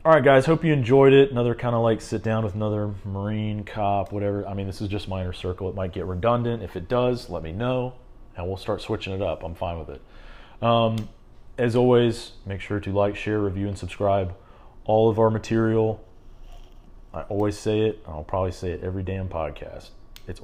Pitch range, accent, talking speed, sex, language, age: 90-110 Hz, American, 210 wpm, male, English, 30-49